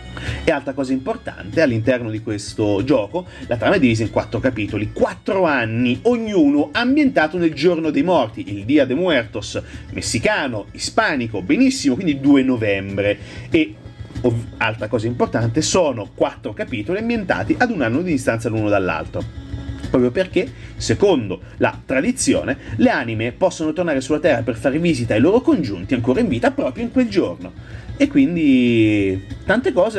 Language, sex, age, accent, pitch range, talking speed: Italian, male, 30-49, native, 110-170 Hz, 150 wpm